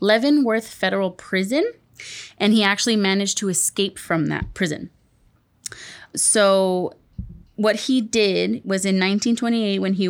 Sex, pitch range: female, 180-210 Hz